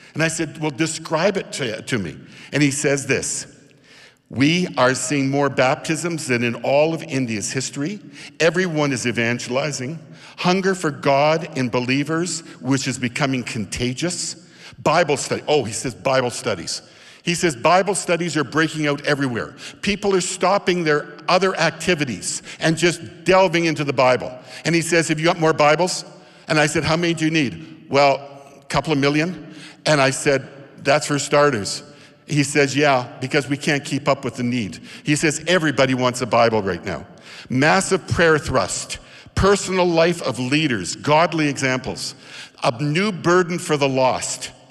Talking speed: 165 wpm